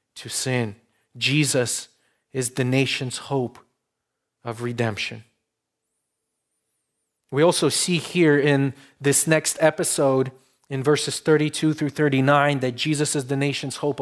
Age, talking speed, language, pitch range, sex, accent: 30-49, 120 wpm, English, 120-160 Hz, male, Canadian